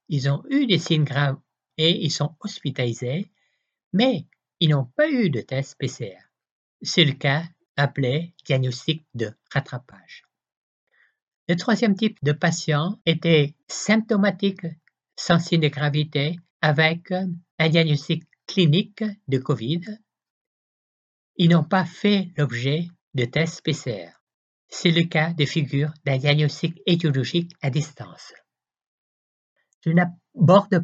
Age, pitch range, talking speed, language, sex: 60-79, 145-175 Hz, 120 wpm, French, male